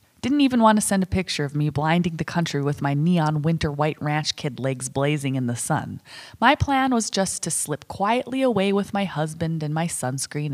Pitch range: 145-190 Hz